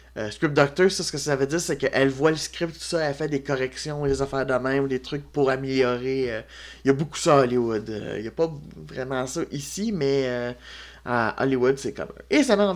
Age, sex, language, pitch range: 30-49, male, French, 115-160 Hz